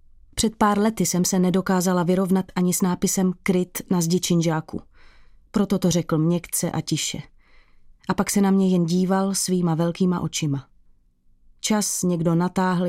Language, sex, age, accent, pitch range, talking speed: Czech, female, 30-49, native, 165-195 Hz, 155 wpm